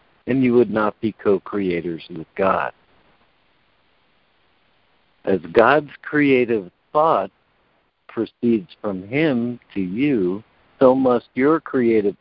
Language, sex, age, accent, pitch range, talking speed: English, male, 60-79, American, 100-135 Hz, 105 wpm